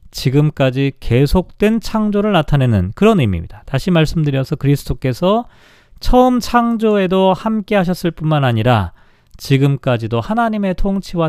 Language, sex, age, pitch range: Korean, male, 40-59, 130-195 Hz